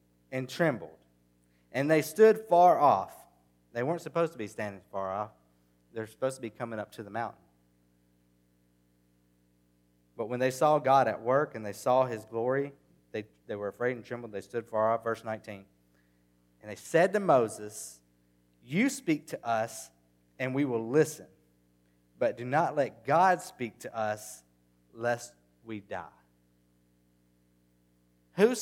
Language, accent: English, American